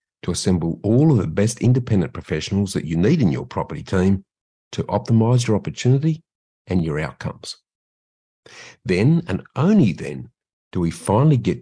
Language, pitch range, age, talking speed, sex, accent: English, 85-120 Hz, 50-69, 155 wpm, male, Australian